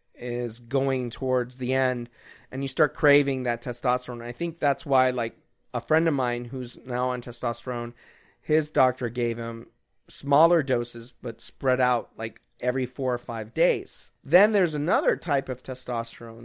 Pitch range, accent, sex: 125-150 Hz, American, male